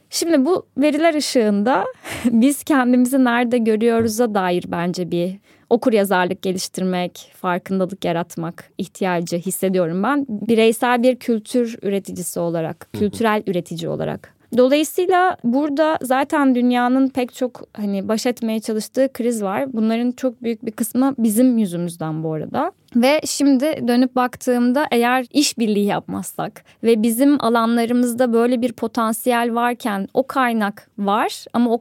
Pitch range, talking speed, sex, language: 200-255 Hz, 125 wpm, female, Turkish